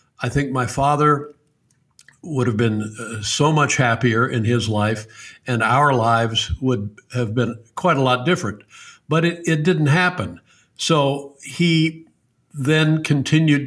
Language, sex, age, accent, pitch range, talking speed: English, male, 60-79, American, 125-145 Hz, 145 wpm